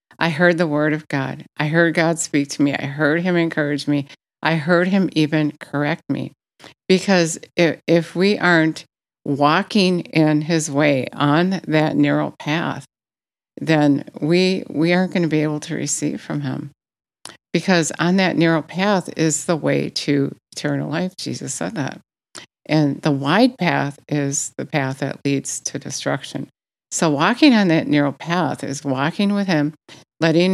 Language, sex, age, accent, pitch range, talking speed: English, female, 50-69, American, 145-175 Hz, 165 wpm